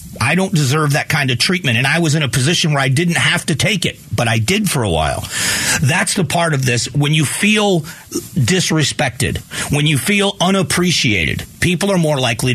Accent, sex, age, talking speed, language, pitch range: American, male, 40-59, 205 wpm, English, 125-155 Hz